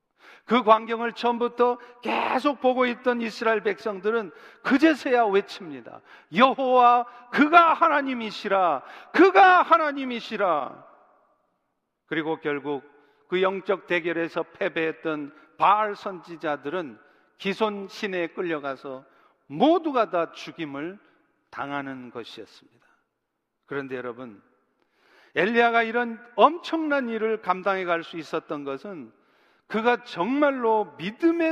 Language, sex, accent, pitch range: Korean, male, native, 165-230 Hz